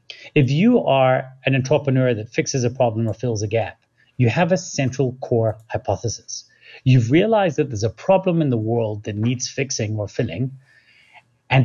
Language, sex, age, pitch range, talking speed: English, male, 30-49, 115-150 Hz, 175 wpm